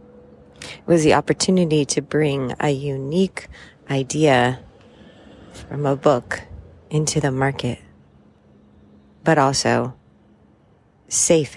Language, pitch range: English, 120-150 Hz